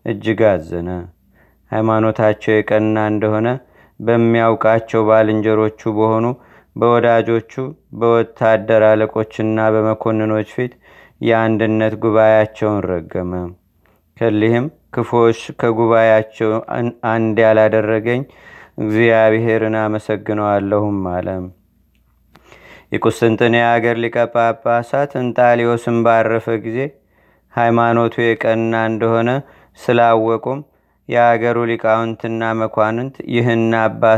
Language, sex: Amharic, male